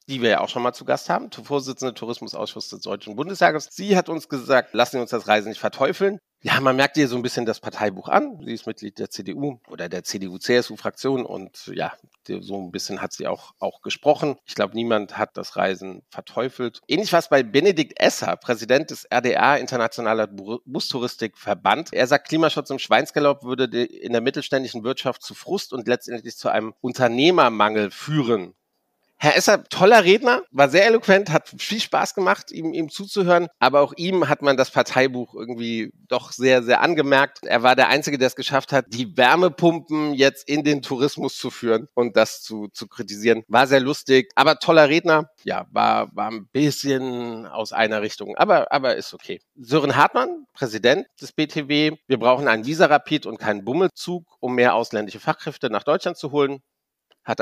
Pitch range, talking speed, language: 115-150 Hz, 185 wpm, German